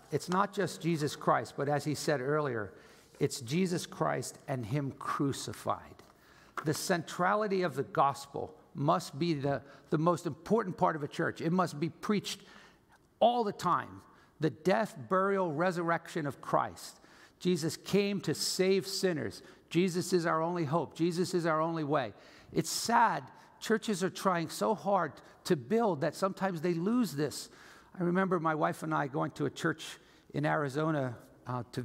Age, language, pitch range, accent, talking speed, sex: 60-79, English, 145-180 Hz, American, 165 wpm, male